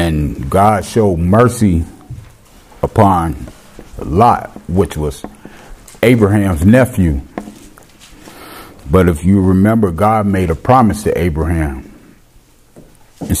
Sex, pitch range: male, 80-100 Hz